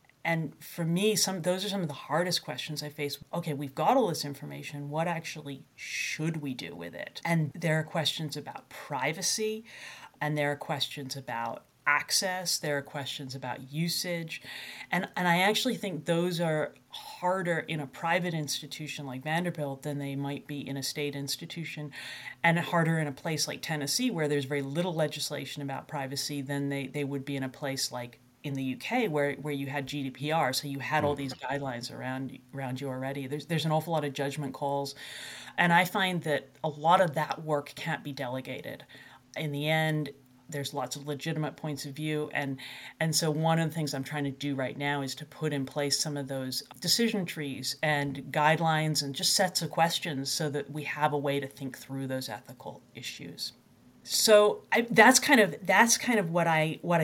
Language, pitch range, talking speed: English, 140-165 Hz, 200 wpm